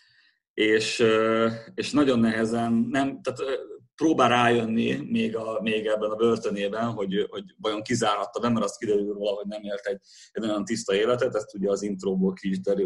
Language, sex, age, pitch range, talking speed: Hungarian, male, 30-49, 100-115 Hz, 170 wpm